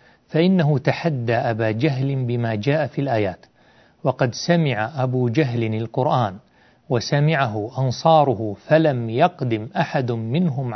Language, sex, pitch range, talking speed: Arabic, male, 115-150 Hz, 105 wpm